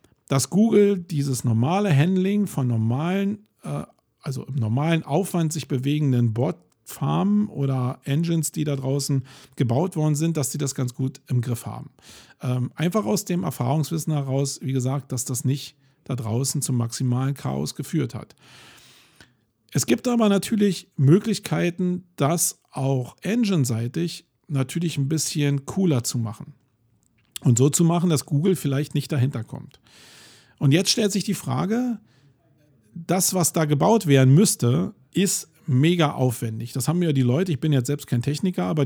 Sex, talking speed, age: male, 150 wpm, 50-69